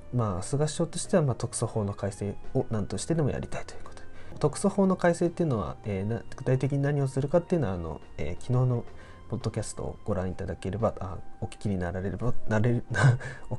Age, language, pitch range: 20-39, Japanese, 100-135 Hz